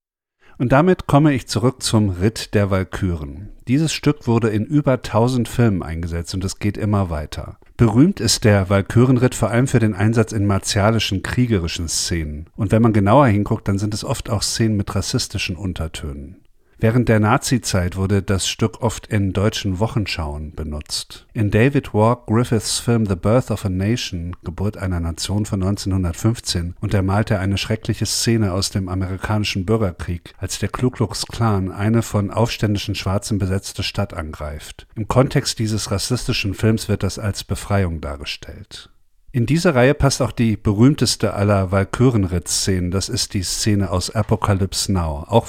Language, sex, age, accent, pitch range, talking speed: German, male, 50-69, German, 95-115 Hz, 160 wpm